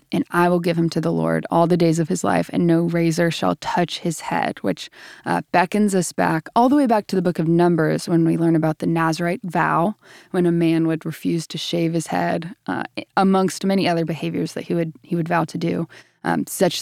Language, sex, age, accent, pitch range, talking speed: English, female, 20-39, American, 165-190 Hz, 235 wpm